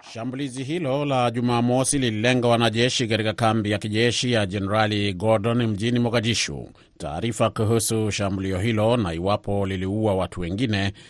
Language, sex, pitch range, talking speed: Swahili, male, 105-120 Hz, 130 wpm